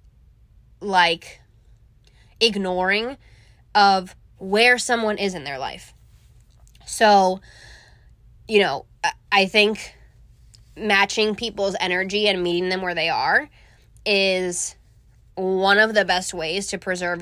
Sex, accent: female, American